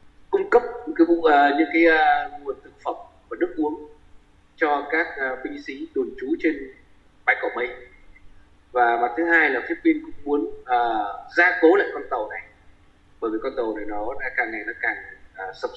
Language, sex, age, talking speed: Vietnamese, male, 20-39, 200 wpm